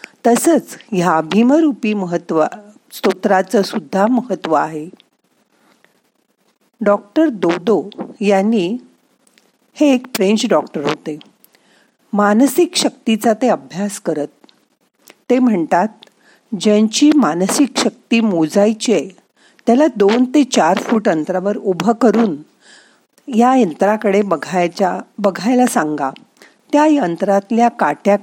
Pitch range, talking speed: 185-250 Hz, 90 wpm